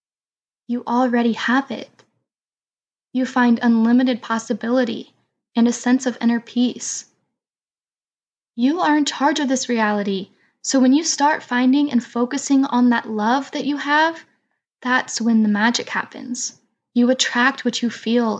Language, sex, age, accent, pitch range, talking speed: English, female, 10-29, American, 225-255 Hz, 145 wpm